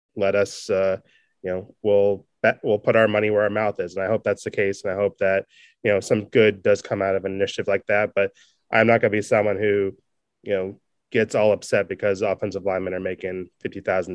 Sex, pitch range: male, 100-115 Hz